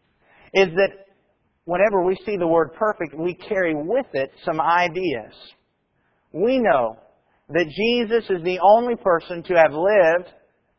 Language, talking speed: English, 140 wpm